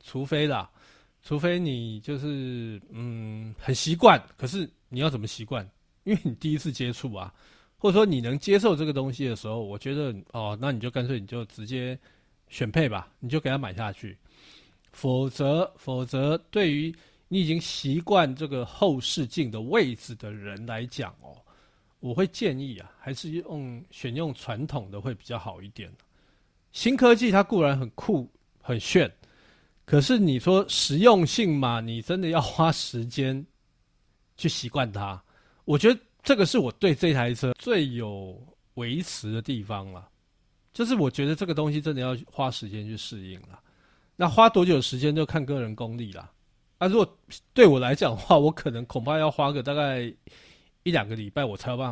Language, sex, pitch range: Chinese, male, 115-155 Hz